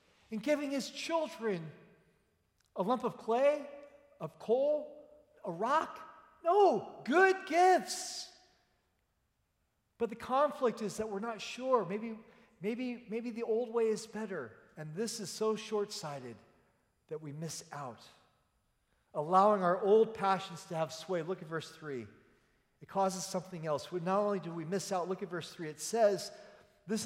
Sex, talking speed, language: male, 150 wpm, English